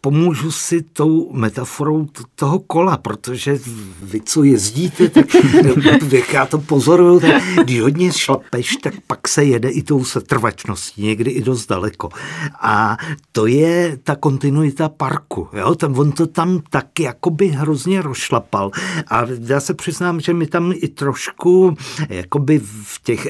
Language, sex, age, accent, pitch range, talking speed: Czech, male, 50-69, native, 125-160 Hz, 145 wpm